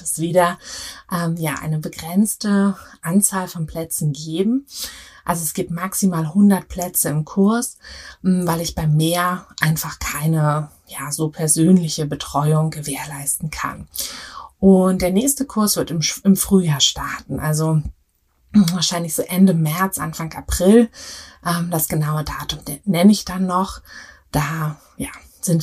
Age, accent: 30-49, German